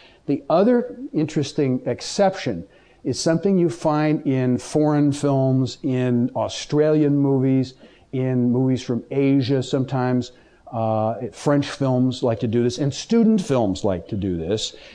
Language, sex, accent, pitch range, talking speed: English, male, American, 120-150 Hz, 135 wpm